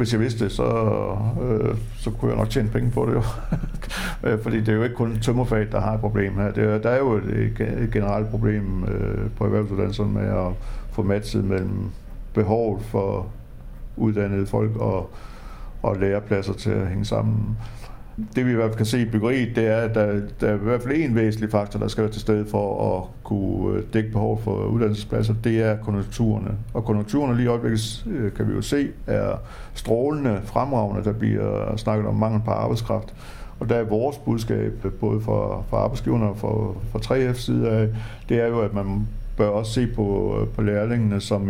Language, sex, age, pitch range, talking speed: Danish, male, 60-79, 105-115 Hz, 195 wpm